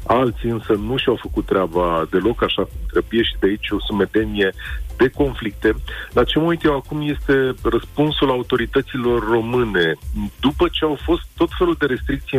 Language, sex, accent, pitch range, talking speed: Romanian, male, native, 115-145 Hz, 165 wpm